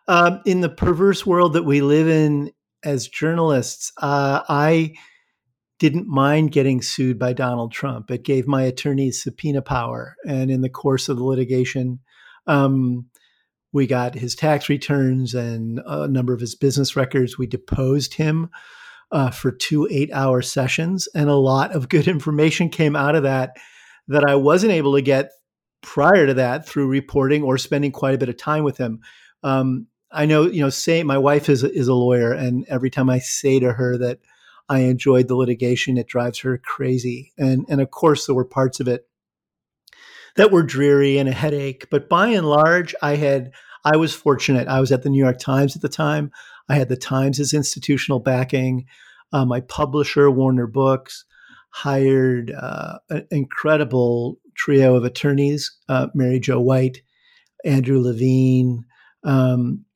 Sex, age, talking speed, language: male, 50-69, 170 wpm, English